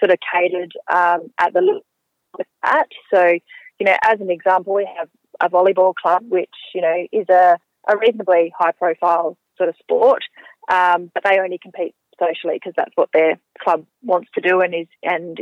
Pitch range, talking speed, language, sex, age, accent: 170-200 Hz, 185 wpm, English, female, 20-39, Australian